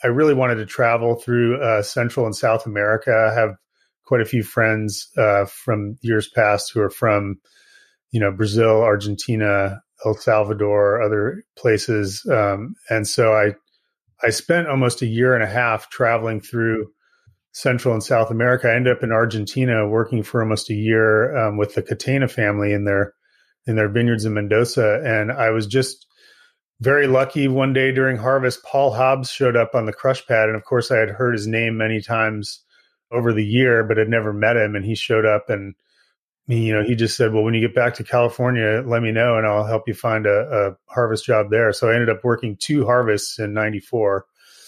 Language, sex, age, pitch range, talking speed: English, male, 30-49, 105-120 Hz, 200 wpm